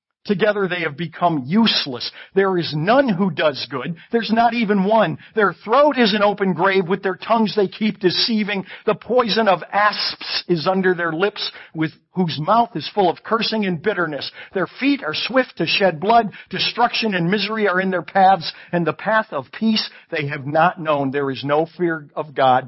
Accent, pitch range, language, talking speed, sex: American, 130-195 Hz, English, 195 wpm, male